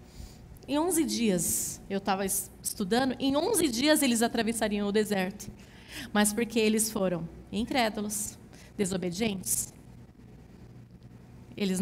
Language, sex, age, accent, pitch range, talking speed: Portuguese, female, 20-39, Brazilian, 200-260 Hz, 100 wpm